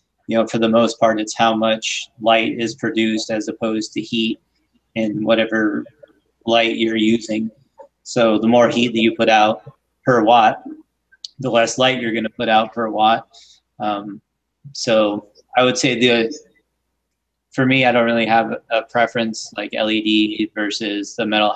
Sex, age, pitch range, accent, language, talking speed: male, 30-49, 110-115 Hz, American, English, 165 wpm